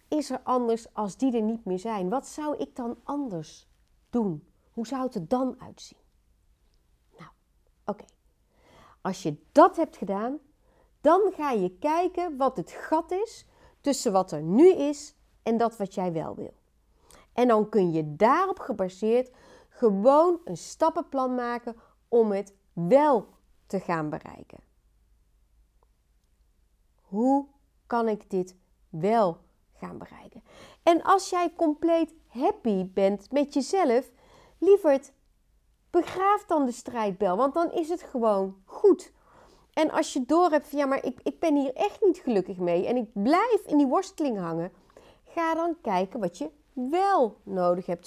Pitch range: 195-320 Hz